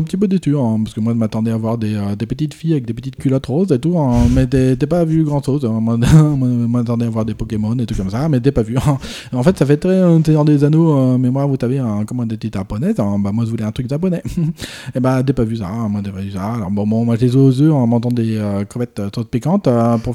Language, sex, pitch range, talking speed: French, male, 115-155 Hz, 315 wpm